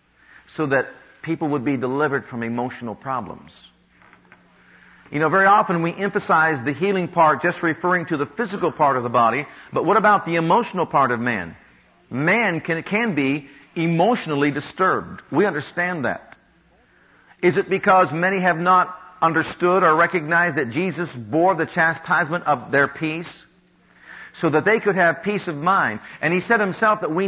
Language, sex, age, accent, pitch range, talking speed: English, male, 50-69, American, 155-195 Hz, 165 wpm